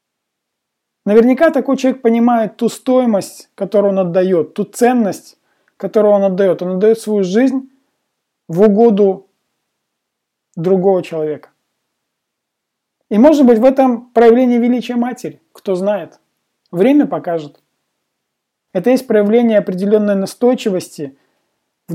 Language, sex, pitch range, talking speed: Russian, male, 185-240 Hz, 110 wpm